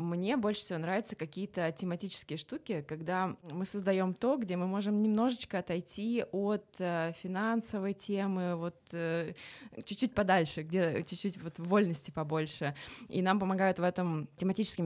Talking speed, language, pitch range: 135 wpm, Russian, 160-190 Hz